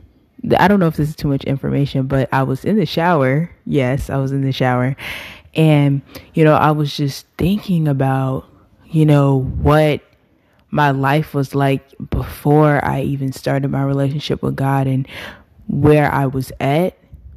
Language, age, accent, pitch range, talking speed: English, 20-39, American, 130-145 Hz, 170 wpm